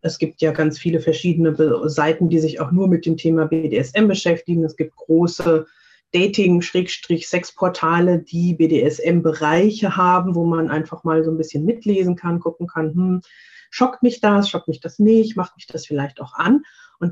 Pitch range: 165-205 Hz